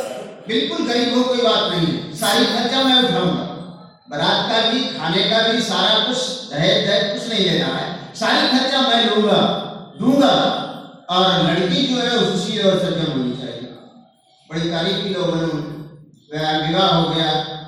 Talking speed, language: 100 wpm, Hindi